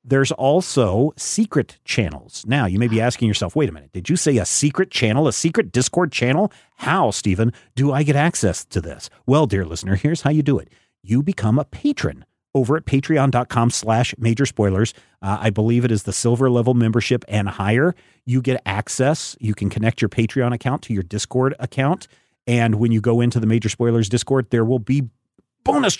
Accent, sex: American, male